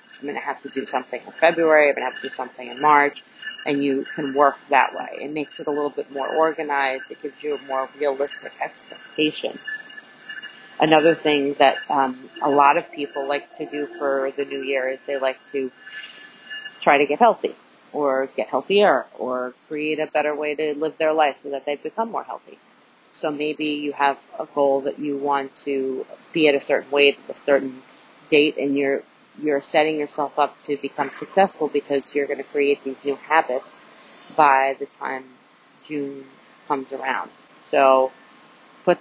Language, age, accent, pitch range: English, 30-49, American, 140-155 Hz